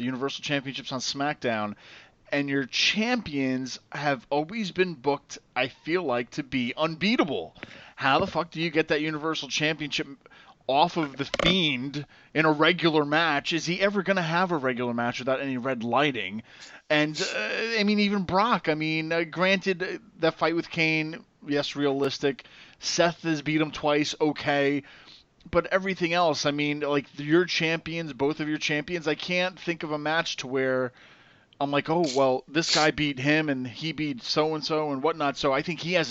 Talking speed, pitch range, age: 185 wpm, 140-165 Hz, 30-49